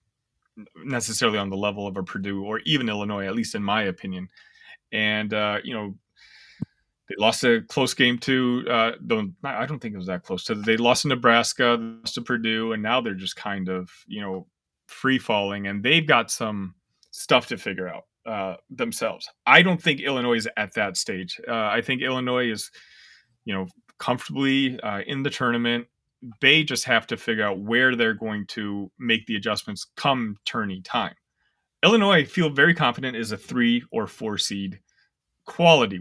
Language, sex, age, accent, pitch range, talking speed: English, male, 30-49, American, 105-130 Hz, 185 wpm